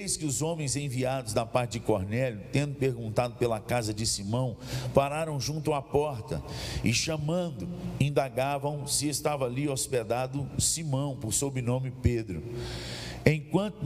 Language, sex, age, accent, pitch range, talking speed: Portuguese, male, 50-69, Brazilian, 115-145 Hz, 130 wpm